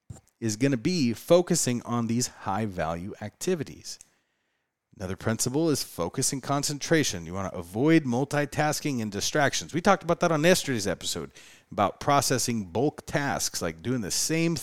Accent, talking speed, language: American, 150 wpm, English